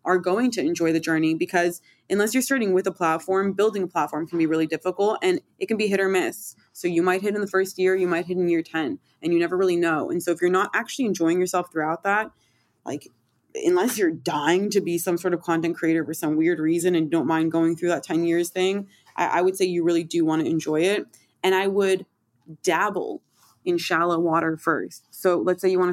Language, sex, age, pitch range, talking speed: English, female, 20-39, 170-240 Hz, 240 wpm